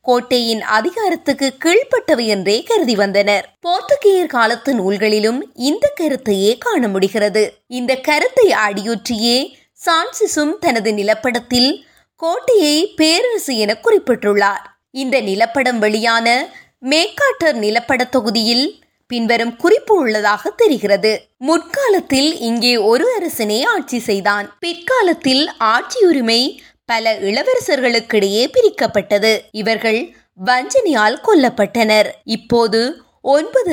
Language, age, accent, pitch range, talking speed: Tamil, 20-39, native, 220-330 Hz, 60 wpm